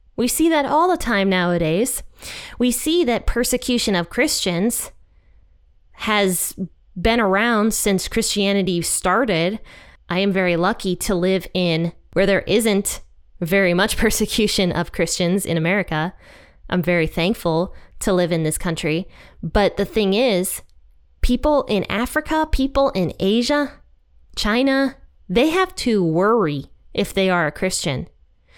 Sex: female